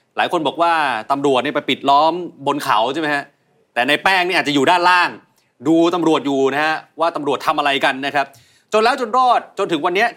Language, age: Thai, 30-49